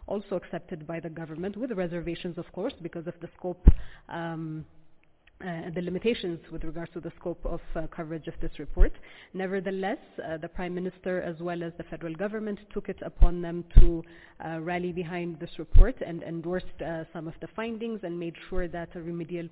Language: English